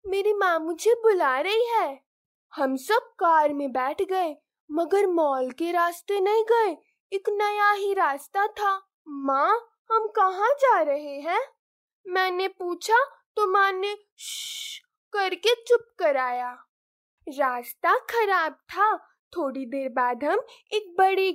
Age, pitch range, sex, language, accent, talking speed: 10-29, 295-410 Hz, female, Hindi, native, 130 wpm